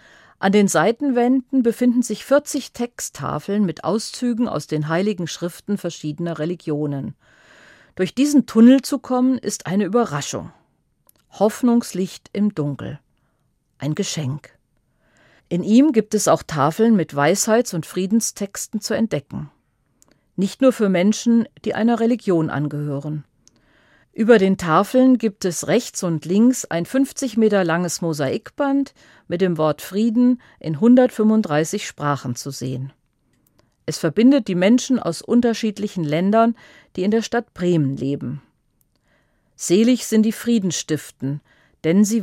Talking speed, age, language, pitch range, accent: 125 wpm, 40-59, German, 150-230 Hz, German